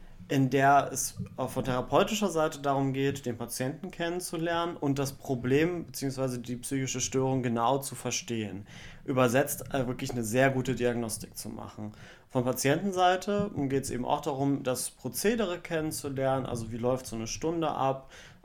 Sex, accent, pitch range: male, German, 120-135 Hz